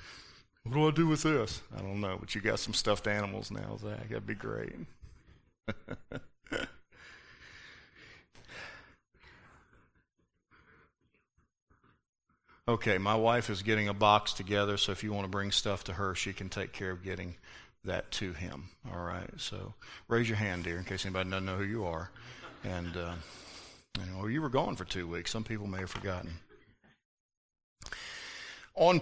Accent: American